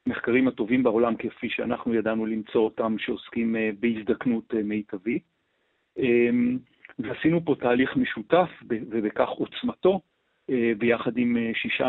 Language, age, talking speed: Hebrew, 40-59, 100 wpm